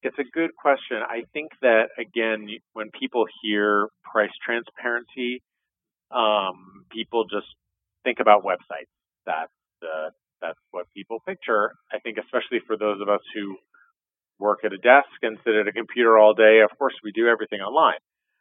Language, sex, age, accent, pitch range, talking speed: English, male, 40-59, American, 105-120 Hz, 160 wpm